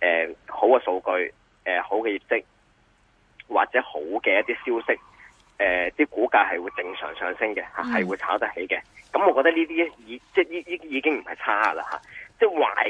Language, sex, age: Chinese, male, 20-39